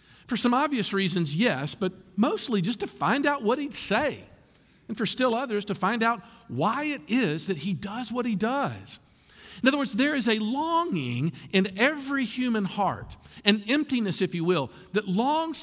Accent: American